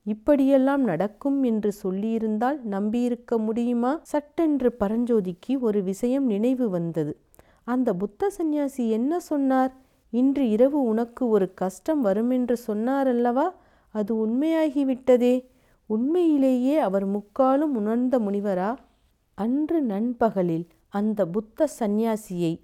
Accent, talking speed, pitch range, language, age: native, 100 wpm, 190-250 Hz, Tamil, 40-59